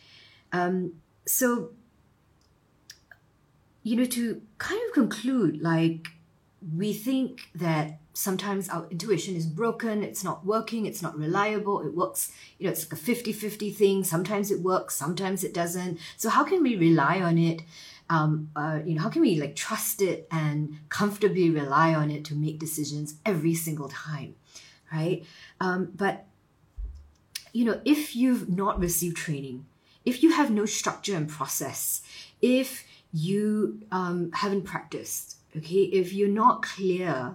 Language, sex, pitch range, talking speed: English, female, 160-205 Hz, 150 wpm